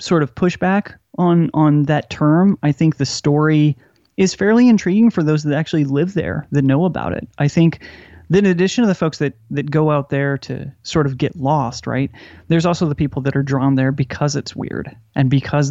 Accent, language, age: American, English, 30-49